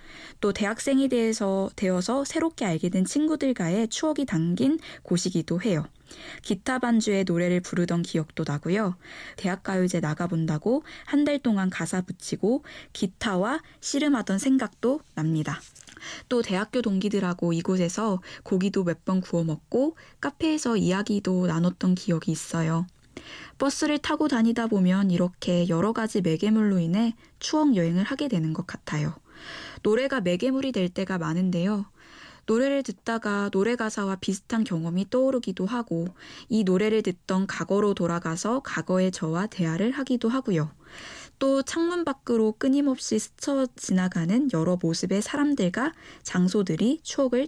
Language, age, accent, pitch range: Korean, 10-29, native, 180-250 Hz